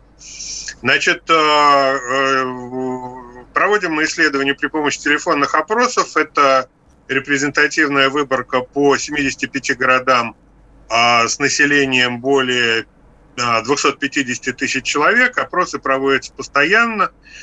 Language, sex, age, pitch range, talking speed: Russian, male, 30-49, 130-155 Hz, 80 wpm